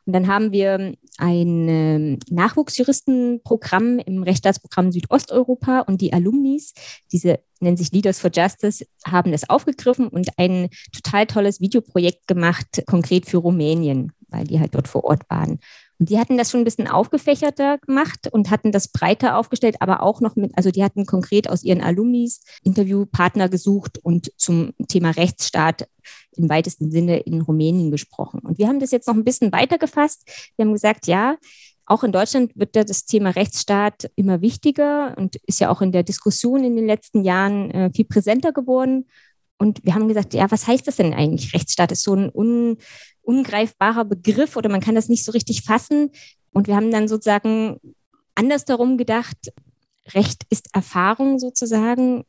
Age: 20-39